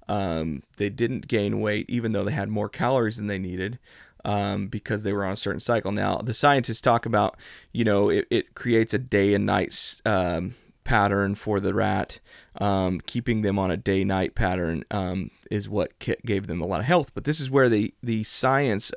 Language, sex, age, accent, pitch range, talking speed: English, male, 30-49, American, 100-120 Hz, 200 wpm